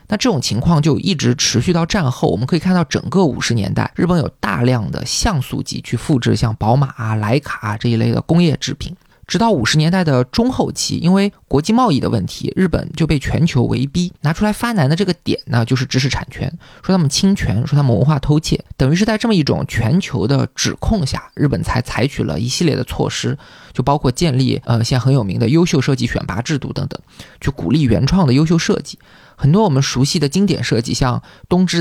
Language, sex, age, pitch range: Chinese, male, 20-39, 130-175 Hz